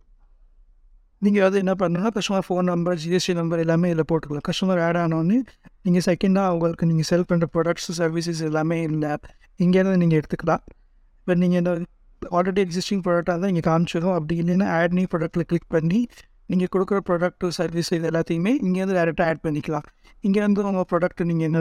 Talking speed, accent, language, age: 110 wpm, Indian, English, 60-79